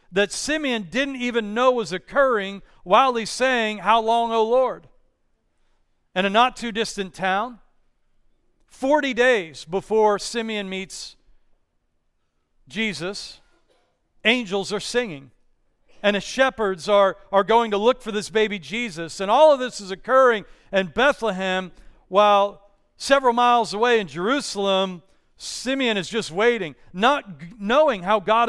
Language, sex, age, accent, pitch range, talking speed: English, male, 40-59, American, 190-230 Hz, 130 wpm